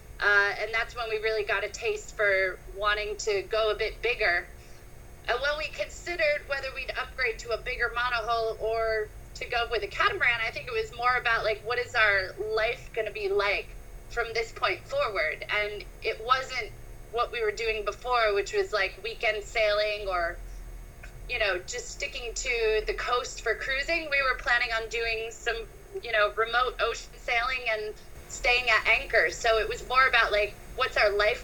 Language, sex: English, female